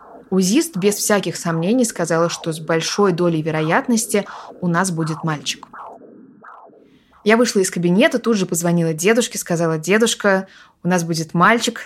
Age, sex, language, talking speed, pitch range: 20-39, female, Russian, 140 wpm, 165-200 Hz